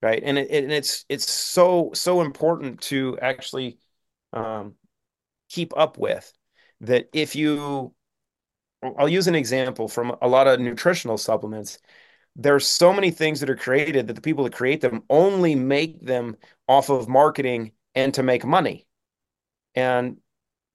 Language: English